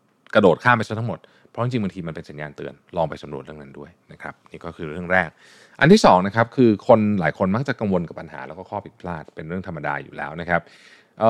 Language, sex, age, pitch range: Thai, male, 20-39, 90-120 Hz